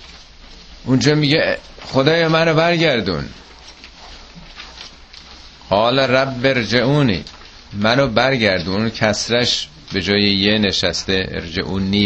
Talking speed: 80 wpm